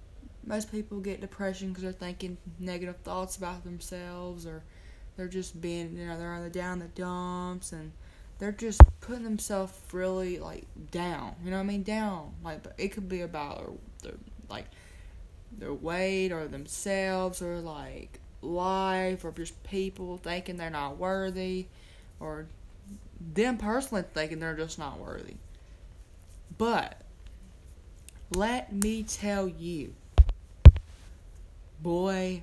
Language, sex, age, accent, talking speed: English, female, 20-39, American, 135 wpm